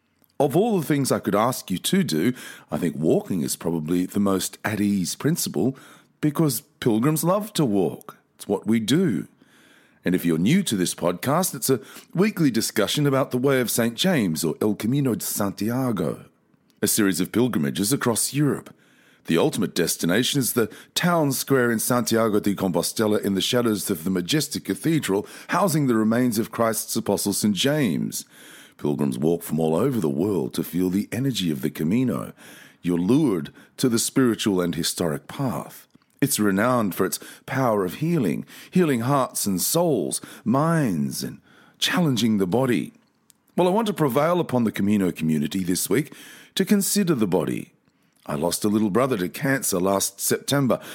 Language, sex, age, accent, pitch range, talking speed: English, male, 40-59, Australian, 100-140 Hz, 170 wpm